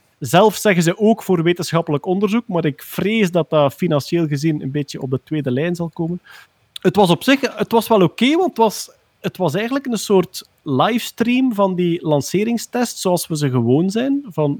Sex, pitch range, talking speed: male, 140-200 Hz, 200 wpm